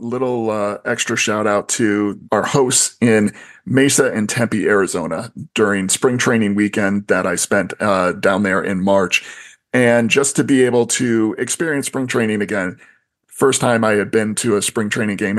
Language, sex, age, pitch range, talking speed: English, male, 40-59, 110-125 Hz, 175 wpm